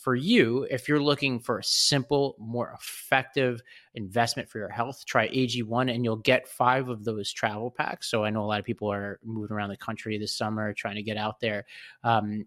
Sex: male